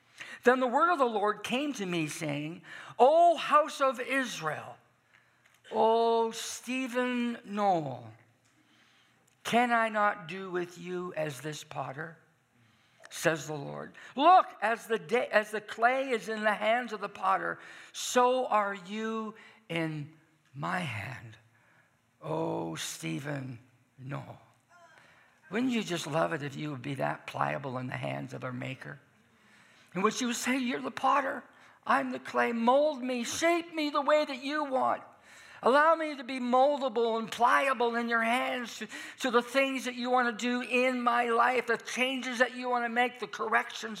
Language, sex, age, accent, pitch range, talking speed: English, male, 60-79, American, 160-245 Hz, 160 wpm